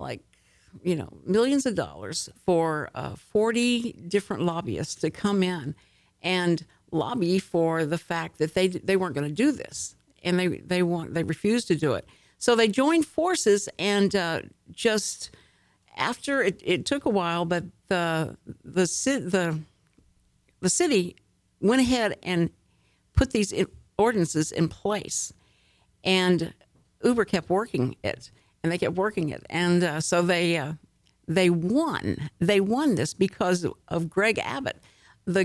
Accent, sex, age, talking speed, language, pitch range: American, female, 50-69, 150 wpm, English, 160-205 Hz